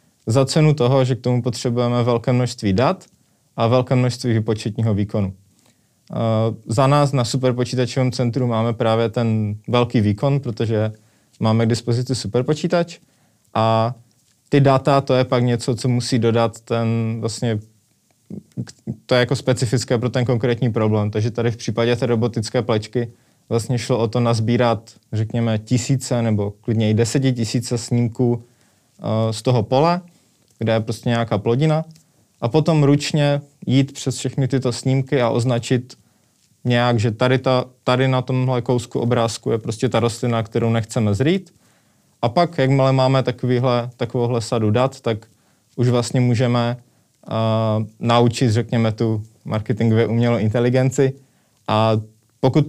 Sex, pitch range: male, 110-130 Hz